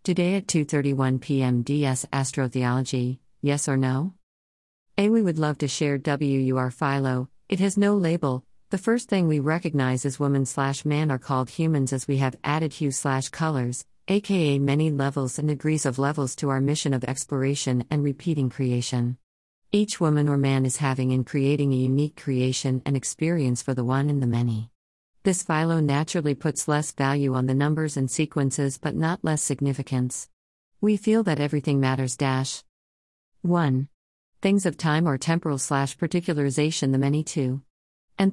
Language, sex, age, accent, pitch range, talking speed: English, female, 40-59, American, 130-155 Hz, 165 wpm